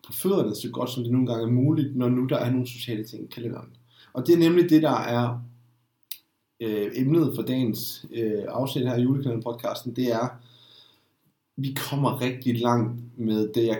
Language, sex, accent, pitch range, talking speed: Danish, male, native, 115-135 Hz, 185 wpm